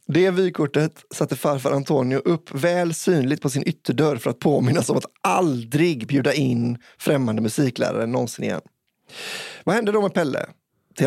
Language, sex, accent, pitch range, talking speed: Swedish, male, native, 130-170 Hz, 155 wpm